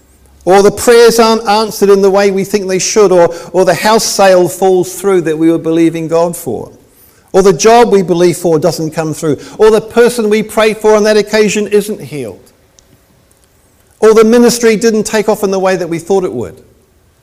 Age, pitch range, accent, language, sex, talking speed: 50-69, 140-205 Hz, British, English, male, 205 wpm